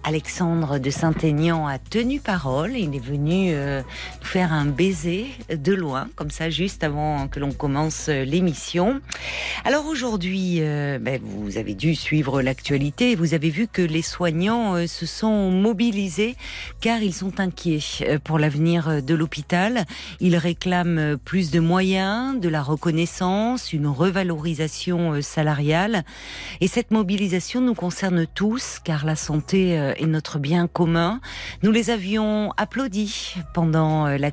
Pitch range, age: 155-190 Hz, 40-59